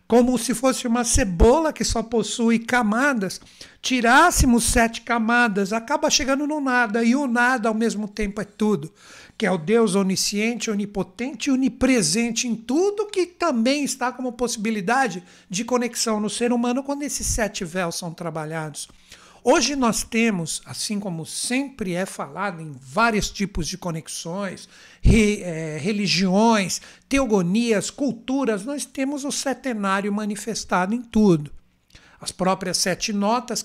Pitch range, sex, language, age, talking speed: 185-240 Hz, male, Portuguese, 60-79, 135 wpm